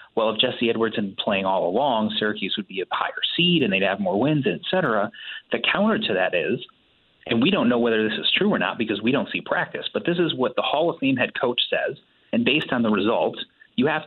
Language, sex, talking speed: English, male, 250 wpm